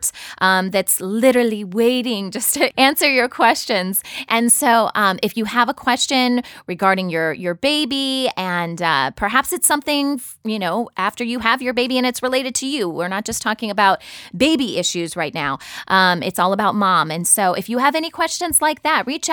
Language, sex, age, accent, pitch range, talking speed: English, female, 20-39, American, 190-260 Hz, 195 wpm